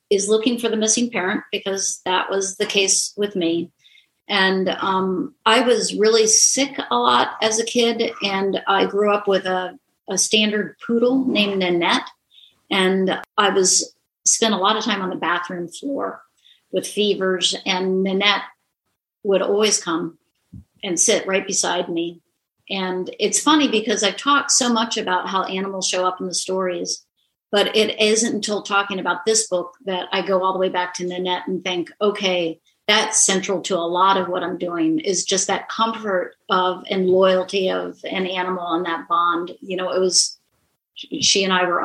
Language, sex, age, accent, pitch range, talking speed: English, female, 40-59, American, 180-210 Hz, 180 wpm